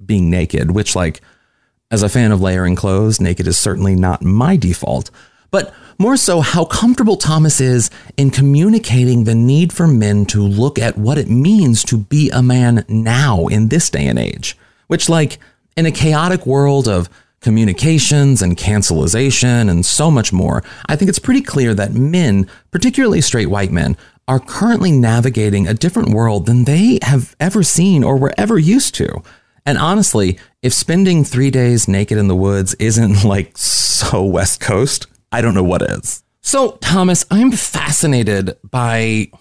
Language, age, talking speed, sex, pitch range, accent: English, 30-49, 170 wpm, male, 105-155 Hz, American